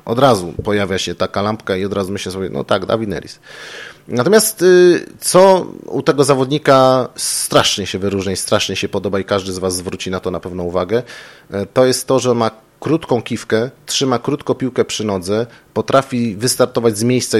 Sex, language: male, Polish